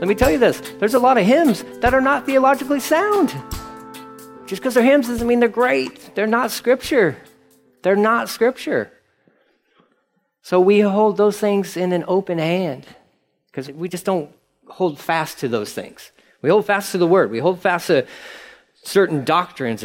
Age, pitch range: 40-59, 145-205 Hz